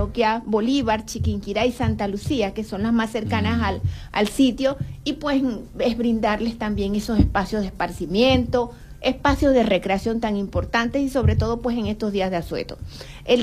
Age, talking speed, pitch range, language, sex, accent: 30-49, 165 wpm, 210-250 Hz, Spanish, female, American